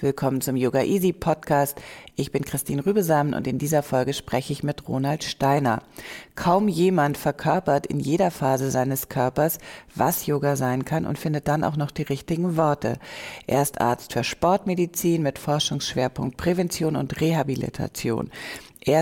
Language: German